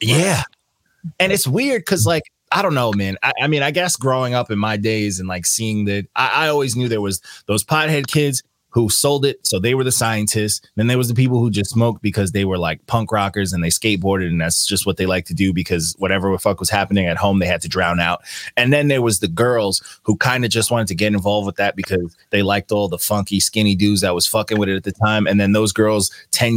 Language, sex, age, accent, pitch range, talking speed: English, male, 20-39, American, 100-140 Hz, 260 wpm